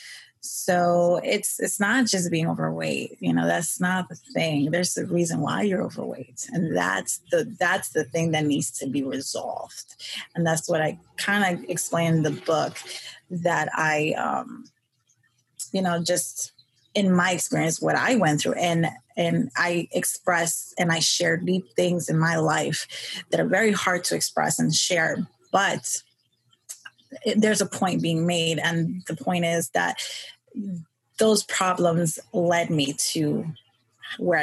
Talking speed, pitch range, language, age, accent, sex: 155 wpm, 155-180 Hz, English, 20-39, American, female